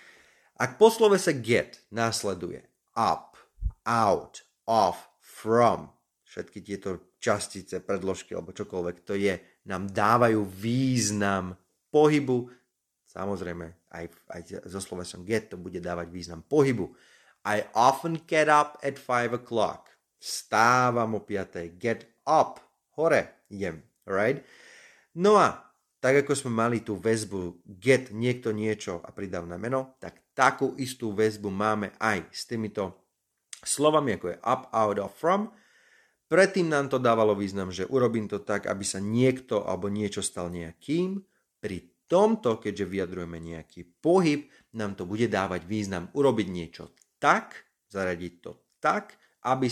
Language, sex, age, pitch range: Slovak, male, 30-49, 95-140 Hz